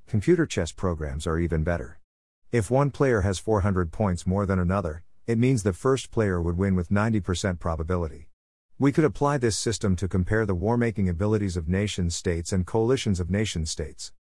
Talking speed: 170 wpm